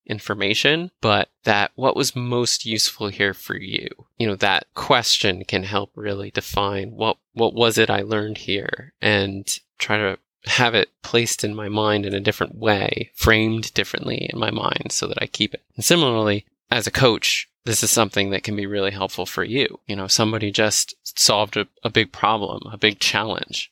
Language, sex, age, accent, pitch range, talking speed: English, male, 20-39, American, 100-115 Hz, 190 wpm